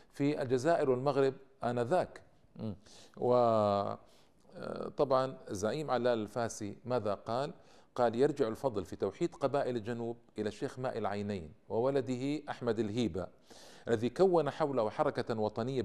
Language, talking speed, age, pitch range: Arabic, 115 wpm, 50-69, 110-135 Hz